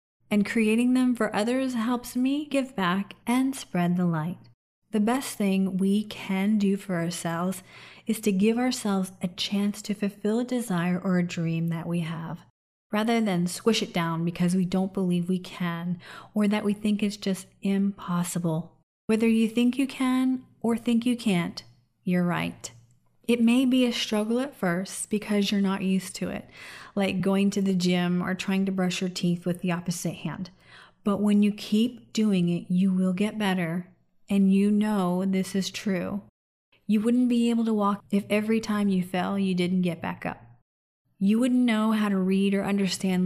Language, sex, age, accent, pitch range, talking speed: English, female, 30-49, American, 180-215 Hz, 185 wpm